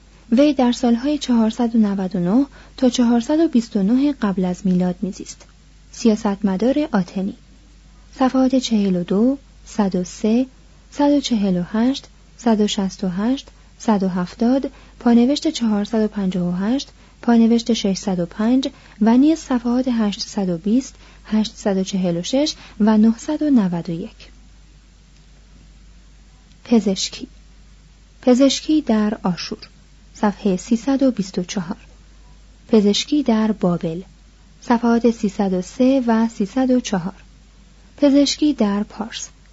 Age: 30-49